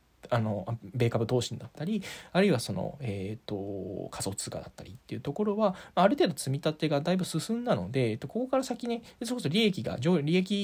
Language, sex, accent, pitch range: Japanese, male, native, 110-155 Hz